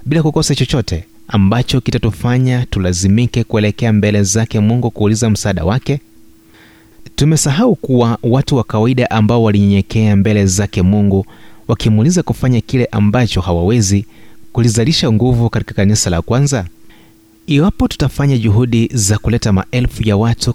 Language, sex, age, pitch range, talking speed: Swahili, male, 30-49, 100-125 Hz, 125 wpm